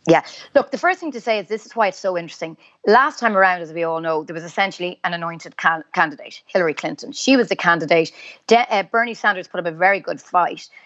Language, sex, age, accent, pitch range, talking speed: English, female, 30-49, Irish, 170-210 Hz, 230 wpm